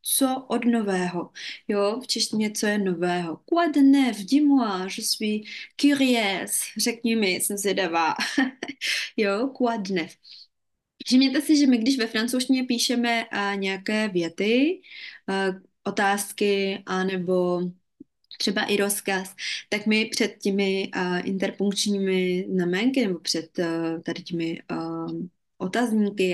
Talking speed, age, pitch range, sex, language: 120 wpm, 20-39, 180-240 Hz, female, Czech